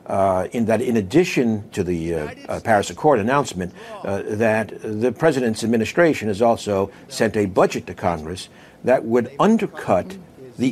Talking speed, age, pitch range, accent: 155 wpm, 60-79, 100-130 Hz, American